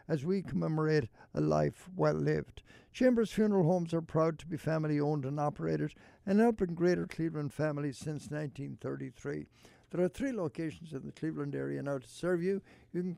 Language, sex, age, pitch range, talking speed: English, male, 60-79, 135-180 Hz, 175 wpm